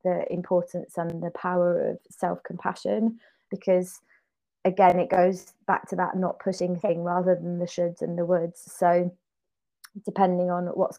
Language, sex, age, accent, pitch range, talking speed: English, female, 20-39, British, 180-205 Hz, 155 wpm